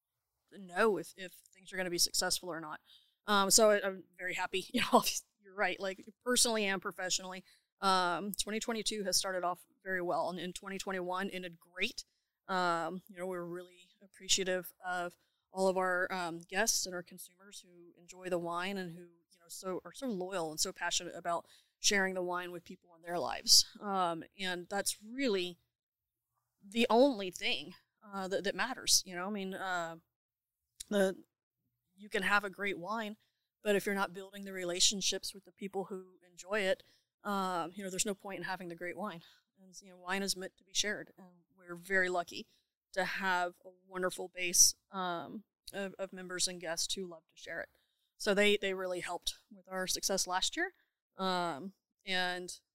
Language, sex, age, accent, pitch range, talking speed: English, female, 20-39, American, 180-200 Hz, 185 wpm